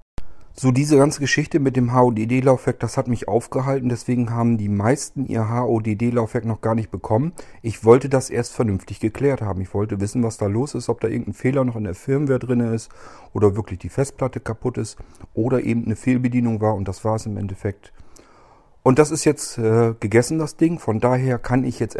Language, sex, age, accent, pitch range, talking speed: German, male, 40-59, German, 100-120 Hz, 205 wpm